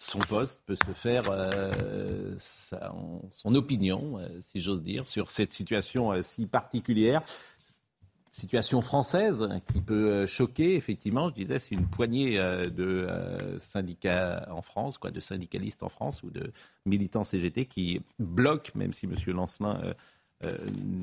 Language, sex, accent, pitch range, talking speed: French, male, French, 95-130 Hz, 155 wpm